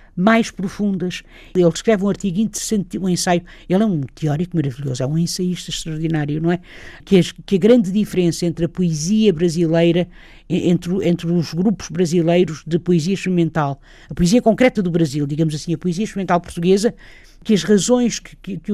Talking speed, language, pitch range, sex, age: 165 wpm, Portuguese, 170-200 Hz, female, 50-69